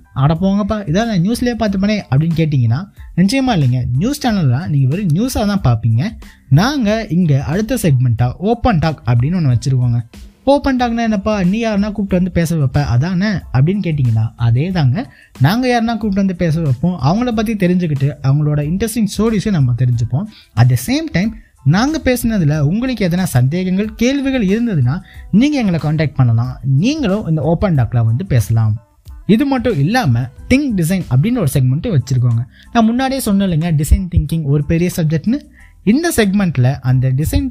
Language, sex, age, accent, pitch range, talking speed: Tamil, male, 20-39, native, 130-220 Hz, 155 wpm